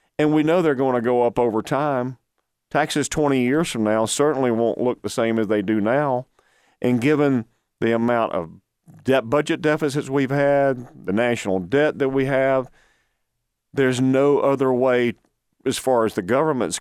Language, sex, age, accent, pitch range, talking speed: English, male, 40-59, American, 115-140 Hz, 170 wpm